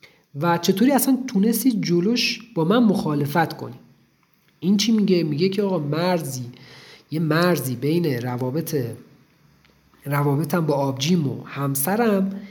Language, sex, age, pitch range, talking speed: Persian, male, 40-59, 135-190 Hz, 120 wpm